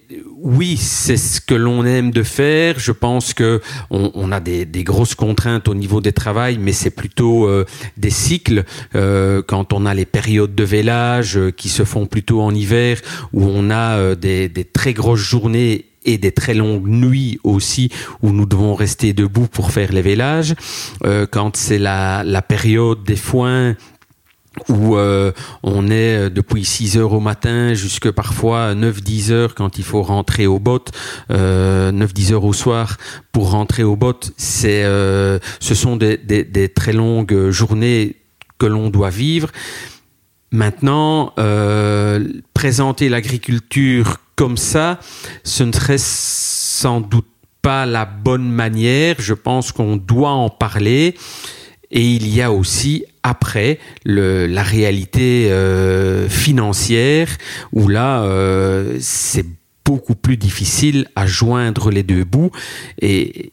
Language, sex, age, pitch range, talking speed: French, male, 40-59, 100-125 Hz, 150 wpm